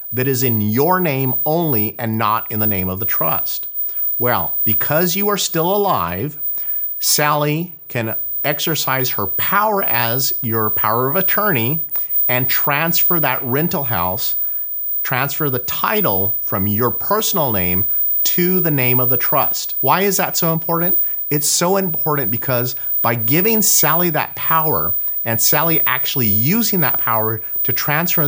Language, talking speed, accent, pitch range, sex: English, 150 wpm, American, 110-155 Hz, male